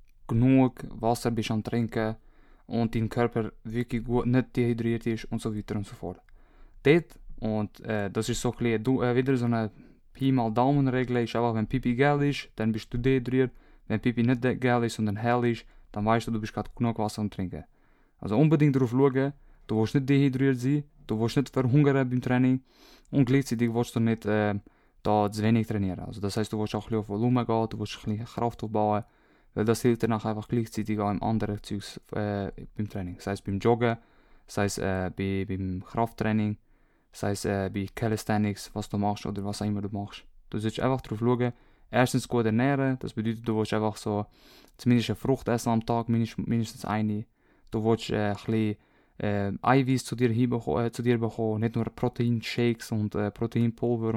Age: 20-39